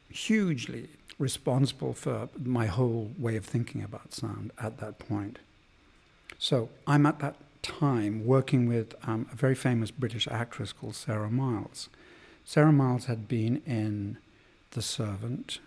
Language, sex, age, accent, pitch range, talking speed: English, male, 50-69, British, 110-135 Hz, 140 wpm